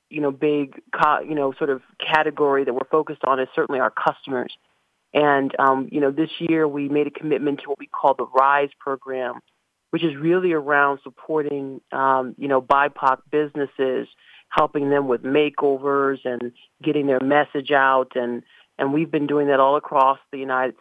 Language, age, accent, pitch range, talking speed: English, 40-59, American, 135-150 Hz, 180 wpm